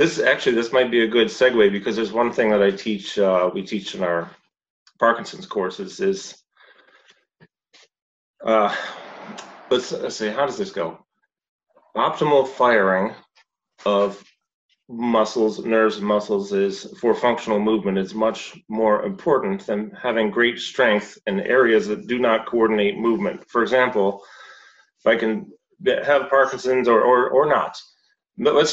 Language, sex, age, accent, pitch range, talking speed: English, male, 30-49, American, 105-125 Hz, 145 wpm